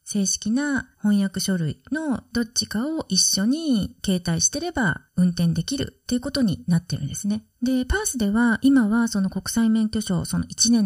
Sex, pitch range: female, 185-260 Hz